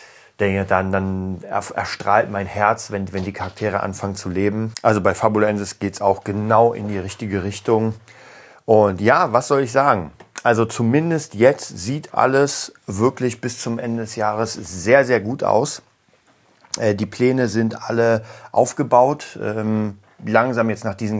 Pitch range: 95-115 Hz